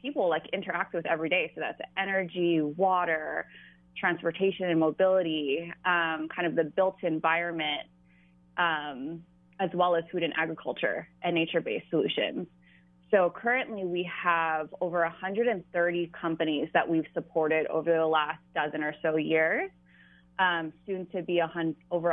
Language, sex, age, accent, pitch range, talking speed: English, female, 20-39, American, 160-180 Hz, 140 wpm